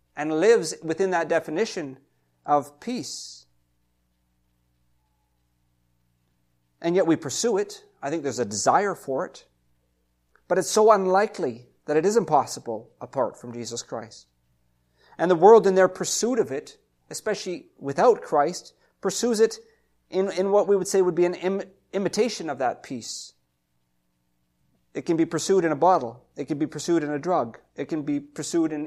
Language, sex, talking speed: English, male, 160 wpm